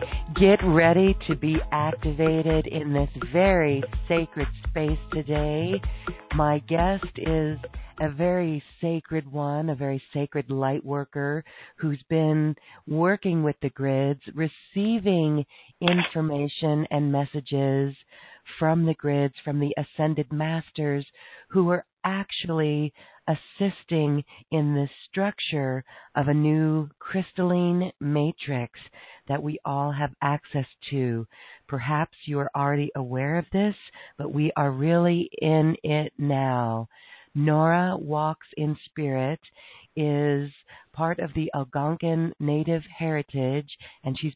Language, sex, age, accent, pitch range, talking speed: English, female, 40-59, American, 135-160 Hz, 115 wpm